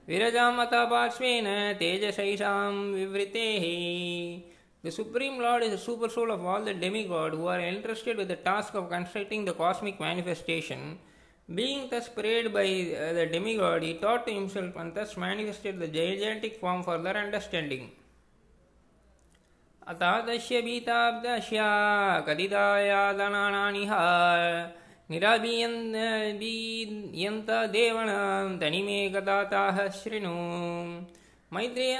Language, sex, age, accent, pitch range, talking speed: Tamil, male, 20-39, native, 175-225 Hz, 100 wpm